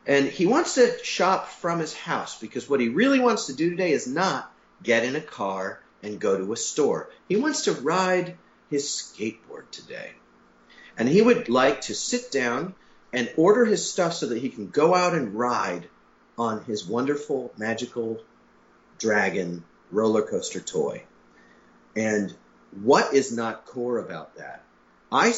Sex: male